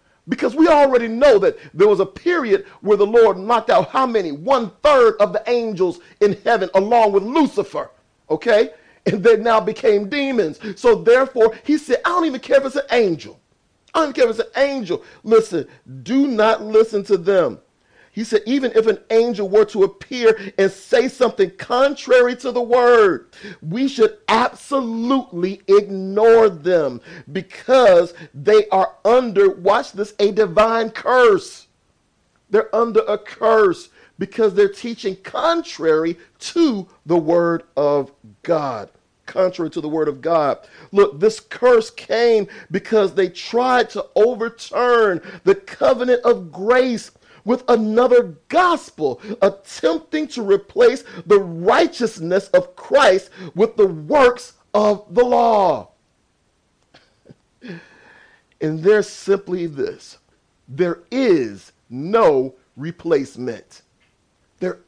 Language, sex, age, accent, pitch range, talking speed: English, male, 40-59, American, 195-265 Hz, 135 wpm